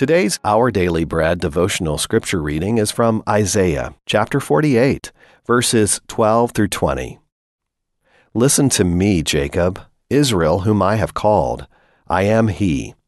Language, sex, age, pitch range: Chinese, male, 40-59, 90-120 Hz